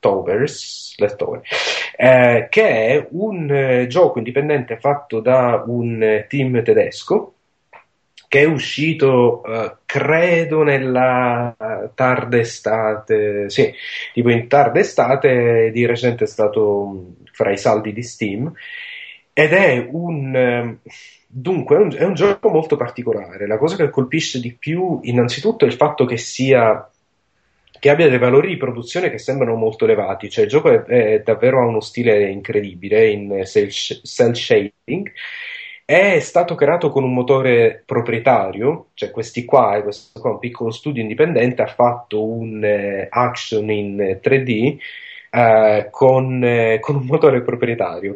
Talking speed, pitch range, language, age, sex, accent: 145 wpm, 115-165 Hz, Italian, 30-49, male, native